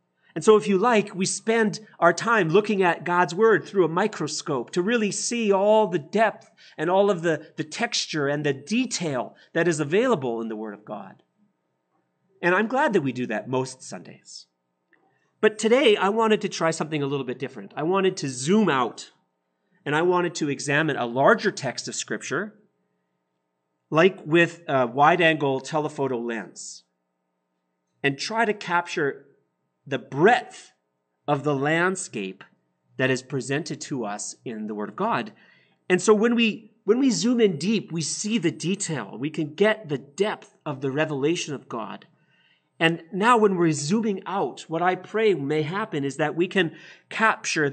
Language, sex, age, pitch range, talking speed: English, male, 40-59, 135-205 Hz, 170 wpm